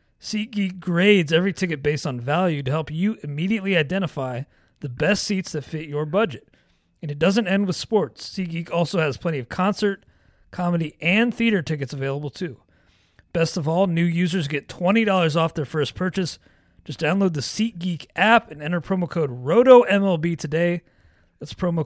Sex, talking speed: male, 165 wpm